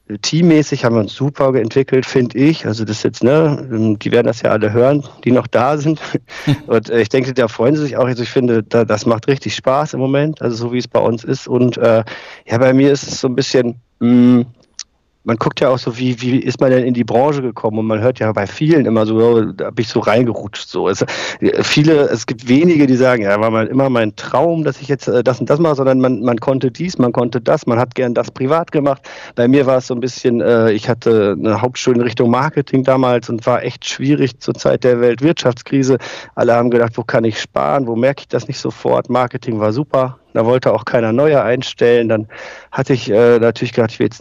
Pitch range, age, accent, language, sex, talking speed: 115-135 Hz, 50-69, German, German, male, 235 wpm